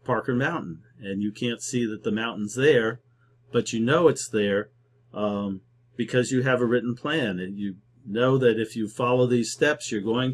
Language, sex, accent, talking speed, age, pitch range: English, male, American, 185 wpm, 50-69, 110-125 Hz